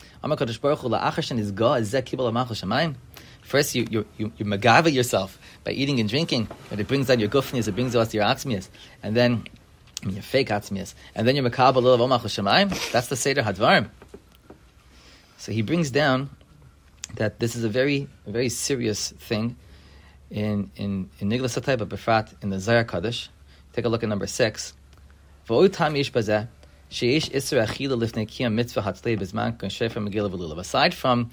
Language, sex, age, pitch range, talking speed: English, male, 30-49, 105-140 Hz, 155 wpm